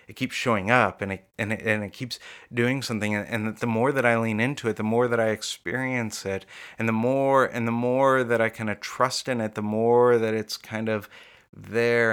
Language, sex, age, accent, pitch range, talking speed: English, male, 30-49, American, 105-120 Hz, 235 wpm